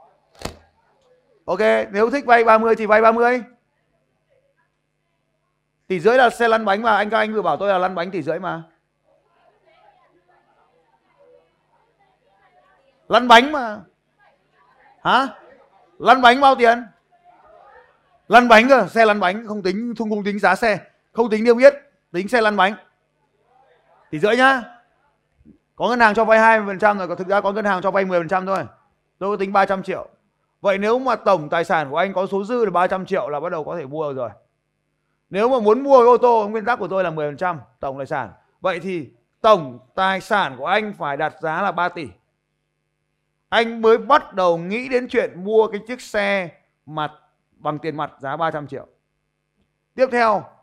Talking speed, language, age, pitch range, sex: 185 wpm, Vietnamese, 20-39, 175-230 Hz, male